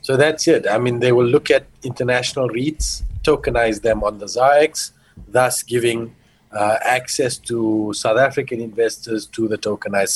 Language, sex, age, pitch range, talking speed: English, male, 40-59, 105-140 Hz, 160 wpm